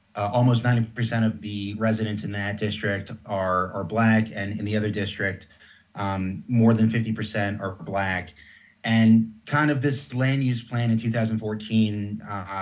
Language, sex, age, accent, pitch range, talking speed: English, male, 30-49, American, 100-115 Hz, 150 wpm